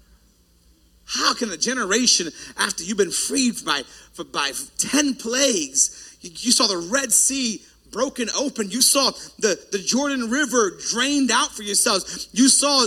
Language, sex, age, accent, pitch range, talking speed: English, male, 40-59, American, 200-260 Hz, 145 wpm